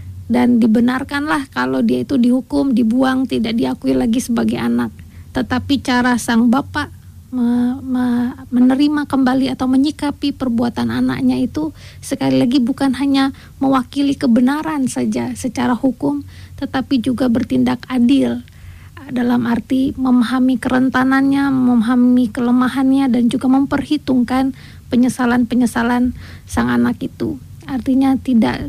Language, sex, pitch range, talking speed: English, female, 235-265 Hz, 110 wpm